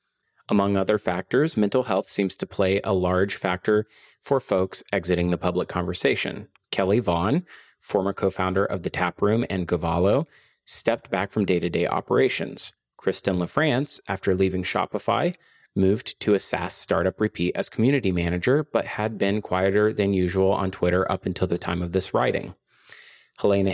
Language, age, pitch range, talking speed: English, 30-49, 95-110 Hz, 155 wpm